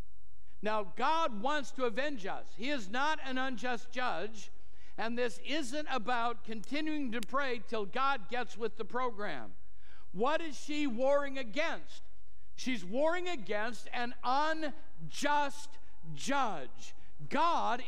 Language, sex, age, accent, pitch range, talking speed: English, male, 60-79, American, 245-315 Hz, 125 wpm